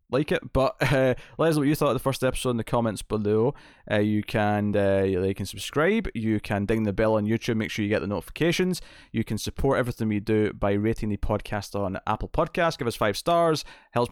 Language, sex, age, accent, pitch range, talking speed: English, male, 20-39, British, 100-125 Hz, 240 wpm